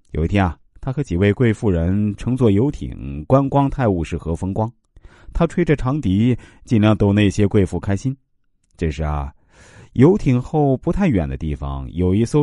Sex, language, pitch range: male, Chinese, 95-140 Hz